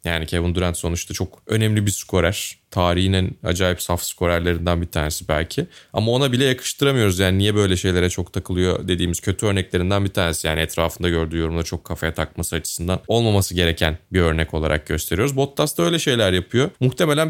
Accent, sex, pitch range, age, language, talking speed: native, male, 95-135 Hz, 20-39, Turkish, 175 wpm